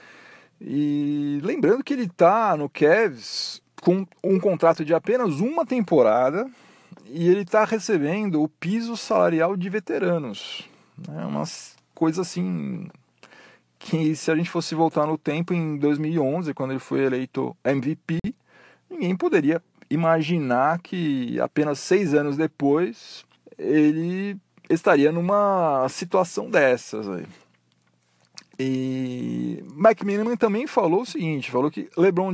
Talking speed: 120 wpm